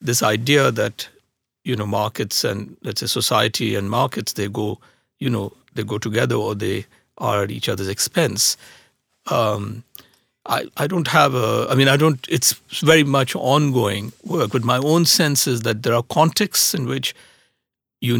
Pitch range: 110-145 Hz